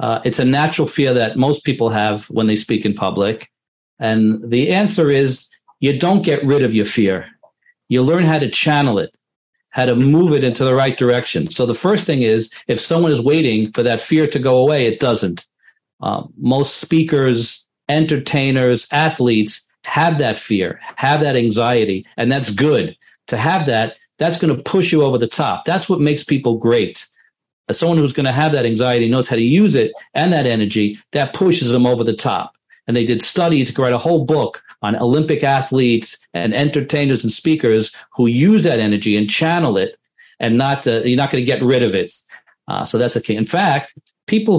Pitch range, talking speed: 115-155 Hz, 200 wpm